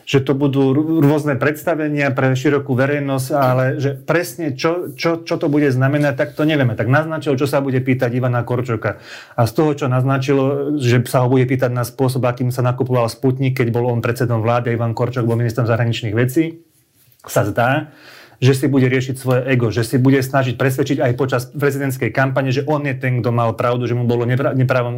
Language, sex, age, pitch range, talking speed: Slovak, male, 30-49, 120-135 Hz, 205 wpm